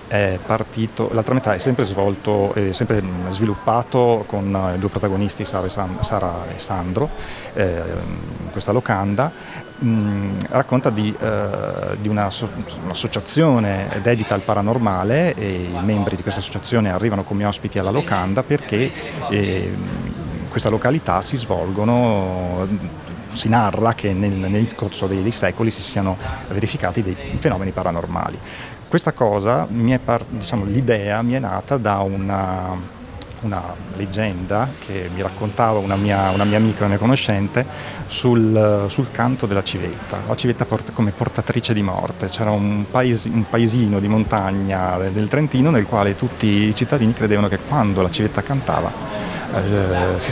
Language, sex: Italian, male